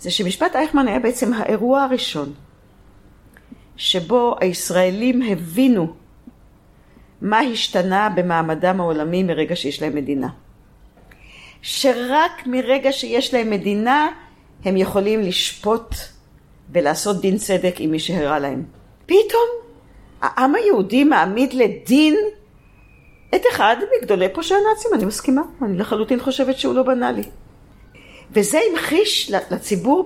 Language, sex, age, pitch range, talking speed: Hebrew, female, 40-59, 195-315 Hz, 110 wpm